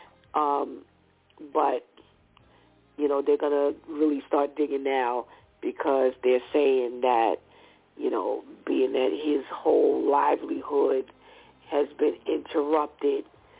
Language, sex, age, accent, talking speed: English, female, 50-69, American, 110 wpm